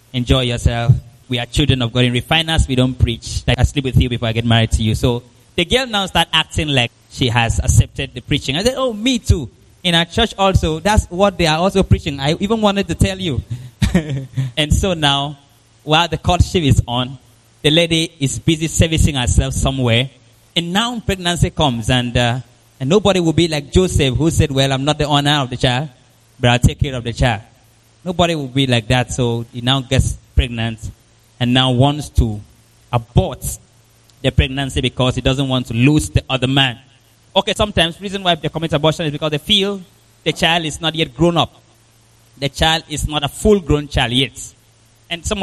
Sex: male